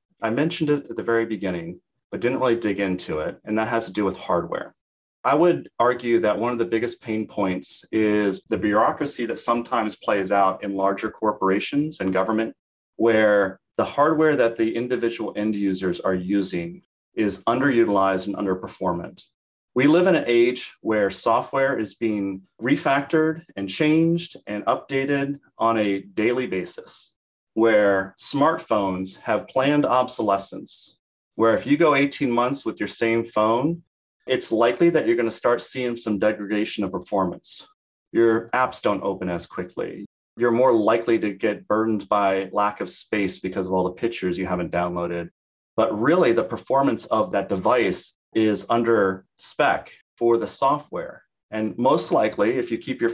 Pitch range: 95-120 Hz